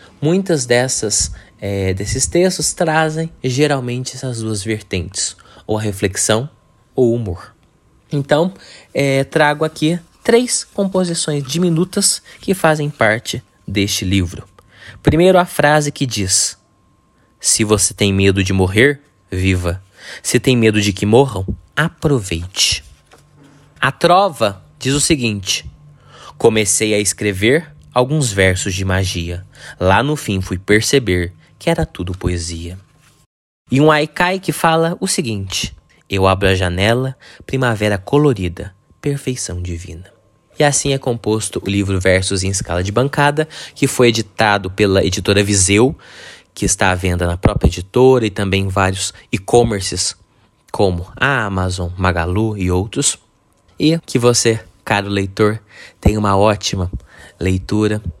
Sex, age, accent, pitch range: male, 20-39, Brazilian, 95-140 Hz